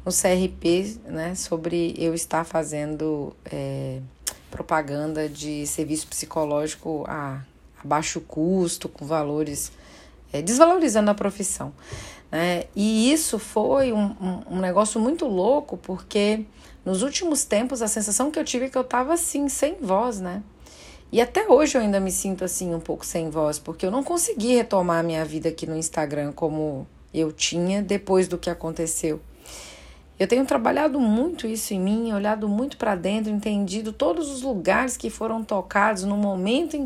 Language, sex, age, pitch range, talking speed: Portuguese, female, 40-59, 170-255 Hz, 155 wpm